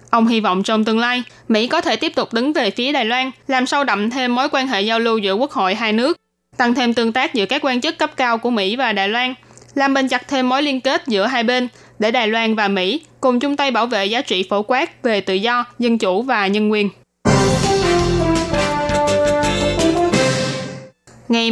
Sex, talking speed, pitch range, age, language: female, 220 wpm, 220-265 Hz, 20-39, Vietnamese